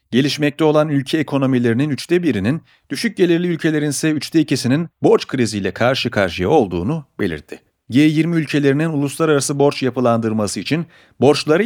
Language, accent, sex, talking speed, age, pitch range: Turkish, native, male, 130 wpm, 40-59, 115-155 Hz